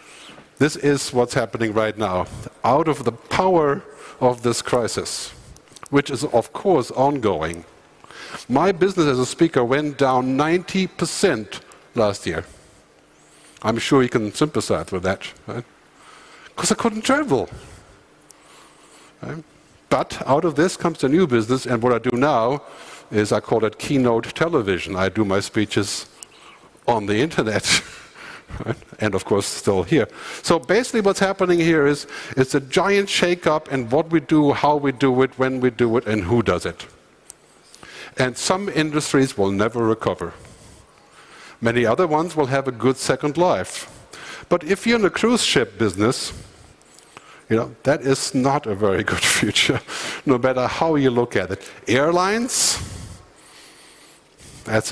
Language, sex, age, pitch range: English, male, 50-69, 120-175 Hz